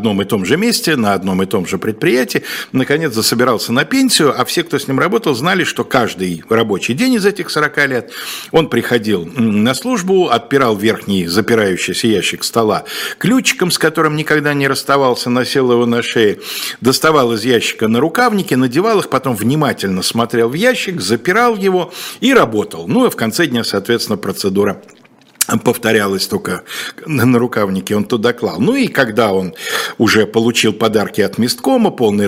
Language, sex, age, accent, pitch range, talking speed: Russian, male, 50-69, native, 110-160 Hz, 165 wpm